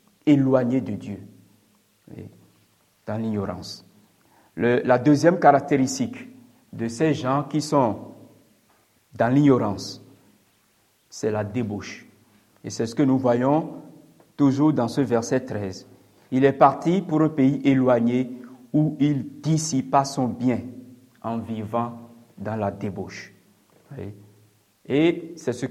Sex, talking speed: male, 115 wpm